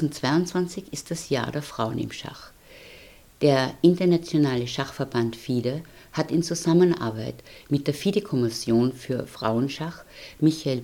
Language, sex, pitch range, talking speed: German, female, 130-165 Hz, 115 wpm